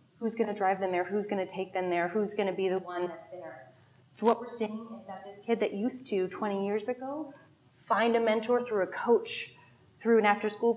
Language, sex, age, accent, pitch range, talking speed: English, female, 30-49, American, 165-210 Hz, 240 wpm